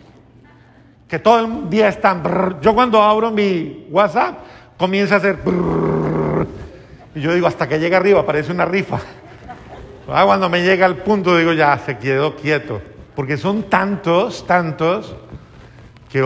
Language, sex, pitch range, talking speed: Spanish, male, 125-170 Hz, 145 wpm